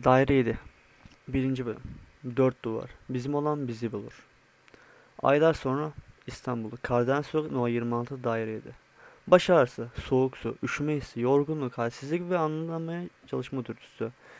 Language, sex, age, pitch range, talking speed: Turkish, male, 30-49, 115-145 Hz, 115 wpm